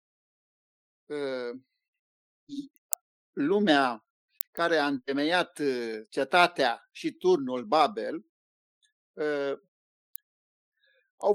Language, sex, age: Romanian, male, 50-69